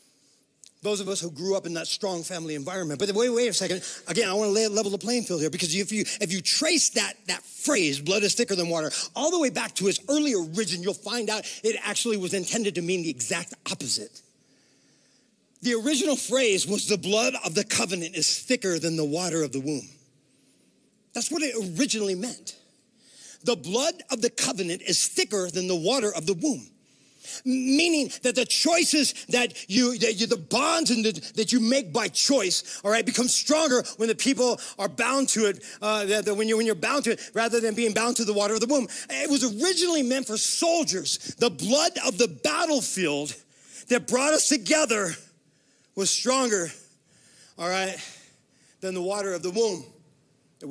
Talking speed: 190 wpm